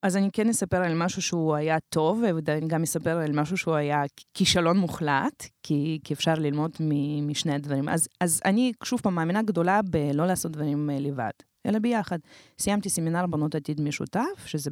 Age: 30-49